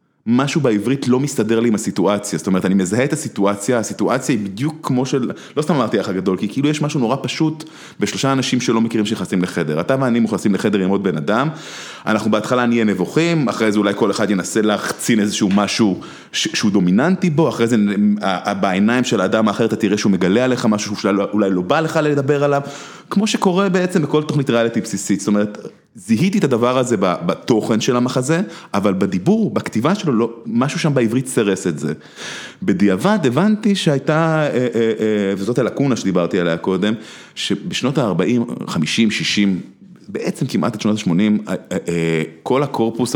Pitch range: 100-140 Hz